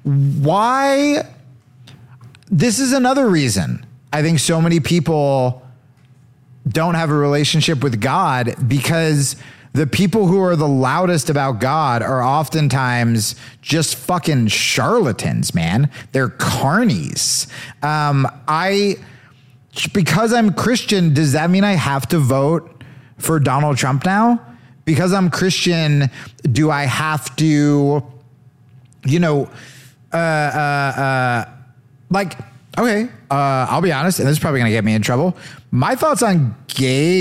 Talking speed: 130 wpm